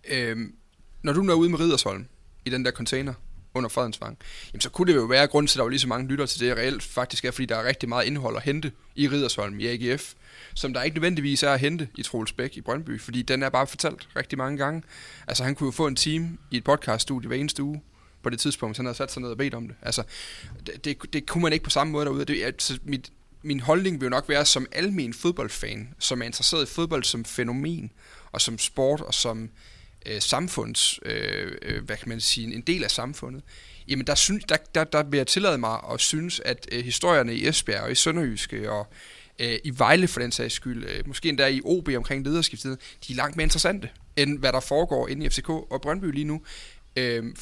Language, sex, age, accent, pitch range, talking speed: Danish, male, 30-49, native, 120-150 Hz, 230 wpm